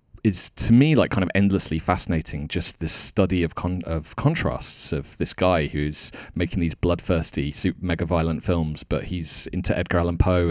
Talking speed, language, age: 185 wpm, English, 30-49